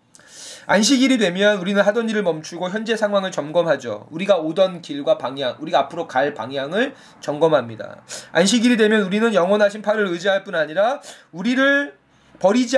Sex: male